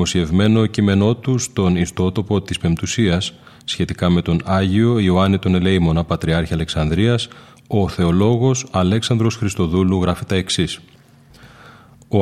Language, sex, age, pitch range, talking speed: Greek, male, 30-49, 85-110 Hz, 110 wpm